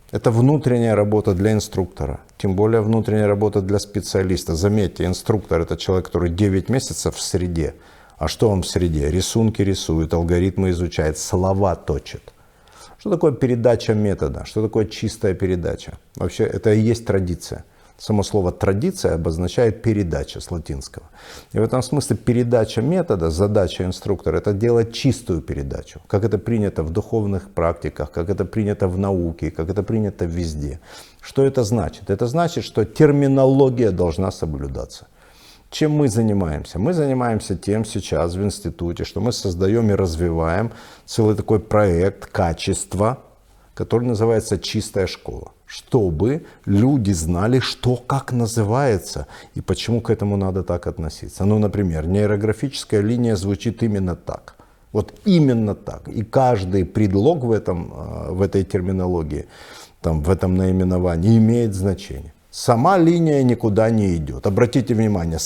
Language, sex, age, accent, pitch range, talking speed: Russian, male, 50-69, native, 90-115 Hz, 140 wpm